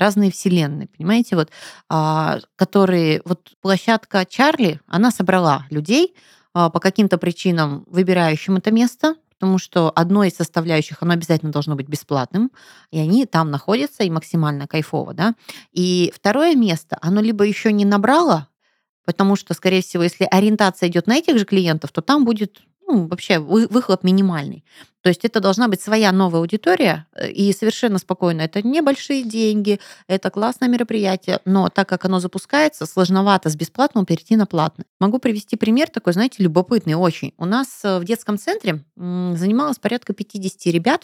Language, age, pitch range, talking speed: Russian, 30-49, 170-215 Hz, 150 wpm